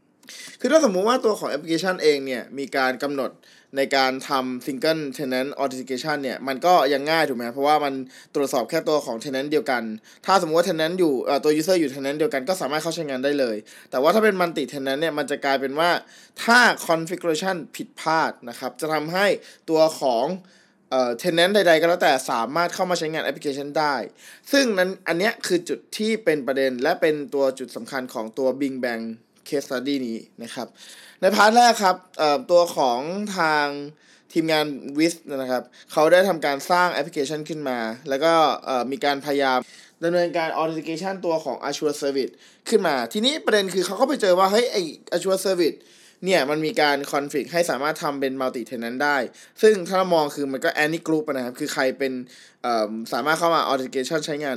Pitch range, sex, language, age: 135-175 Hz, male, Thai, 20-39